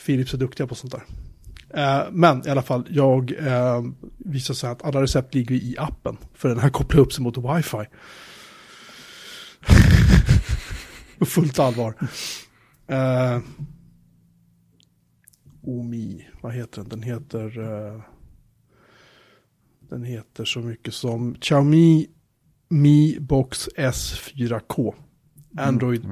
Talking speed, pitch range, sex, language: 115 wpm, 115-140 Hz, male, Swedish